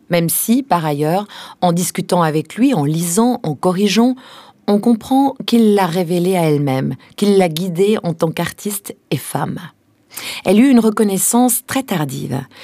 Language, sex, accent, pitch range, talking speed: French, female, French, 155-205 Hz, 155 wpm